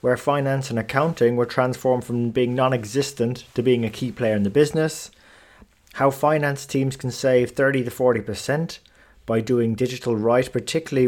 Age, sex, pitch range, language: 30-49, male, 120-140 Hz, English